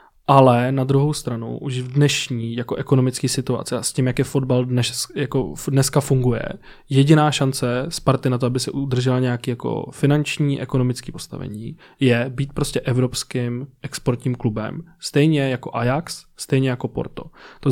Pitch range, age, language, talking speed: 125-145 Hz, 20-39, Czech, 155 wpm